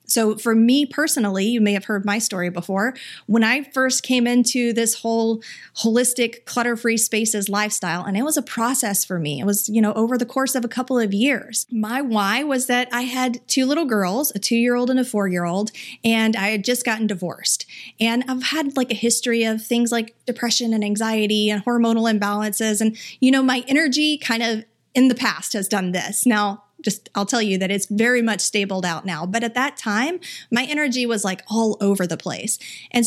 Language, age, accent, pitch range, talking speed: English, 30-49, American, 200-245 Hz, 205 wpm